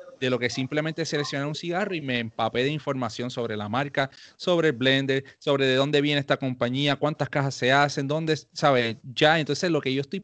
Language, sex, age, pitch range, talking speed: English, male, 30-49, 130-165 Hz, 210 wpm